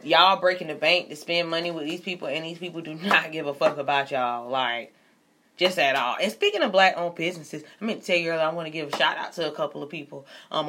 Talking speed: 270 wpm